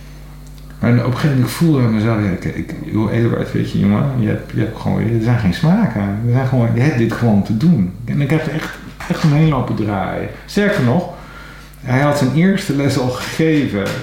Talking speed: 185 wpm